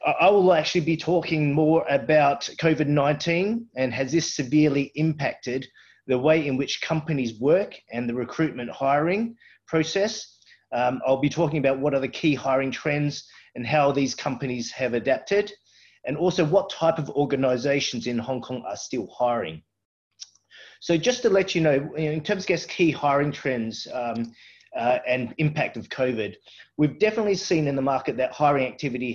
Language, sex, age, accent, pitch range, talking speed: English, male, 30-49, Australian, 125-155 Hz, 165 wpm